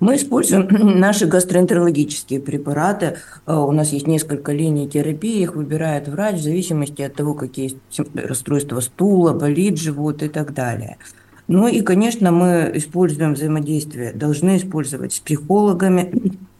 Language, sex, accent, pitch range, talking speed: Russian, female, native, 150-190 Hz, 130 wpm